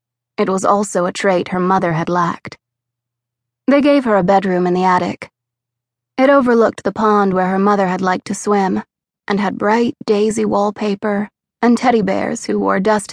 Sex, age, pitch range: female, 20-39, 180-225 Hz